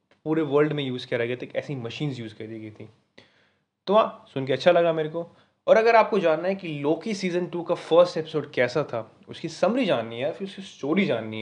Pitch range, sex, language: 125-160 Hz, male, Hindi